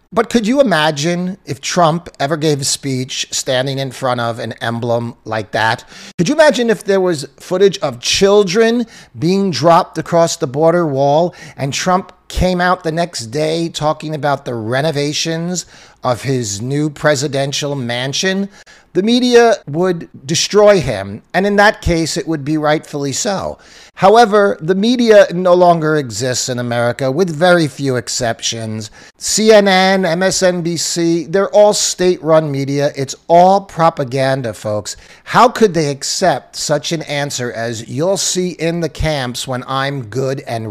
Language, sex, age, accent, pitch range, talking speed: English, male, 40-59, American, 125-180 Hz, 150 wpm